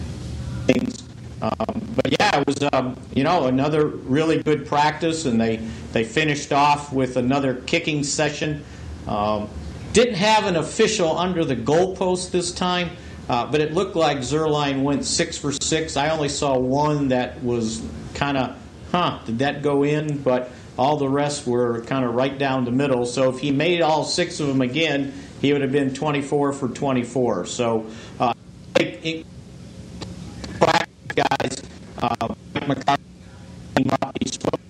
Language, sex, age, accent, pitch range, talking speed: English, male, 50-69, American, 120-150 Hz, 150 wpm